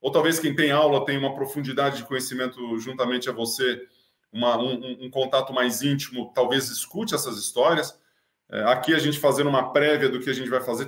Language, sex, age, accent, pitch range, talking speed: Portuguese, male, 20-39, Brazilian, 125-155 Hz, 200 wpm